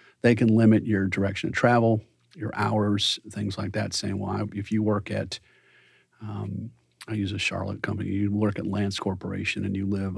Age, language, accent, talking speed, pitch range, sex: 40-59, English, American, 195 wpm, 100-110 Hz, male